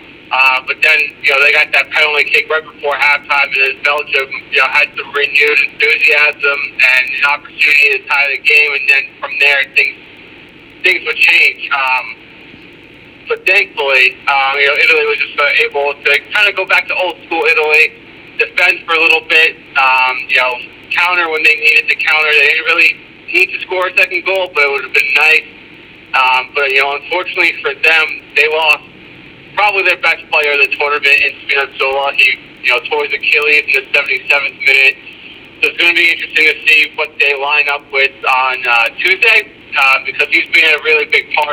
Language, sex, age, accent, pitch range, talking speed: English, male, 40-59, American, 140-185 Hz, 195 wpm